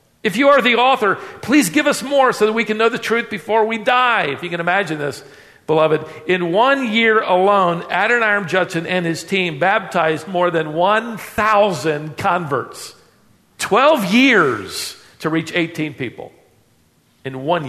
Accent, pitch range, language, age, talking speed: American, 120-175 Hz, English, 50-69, 160 wpm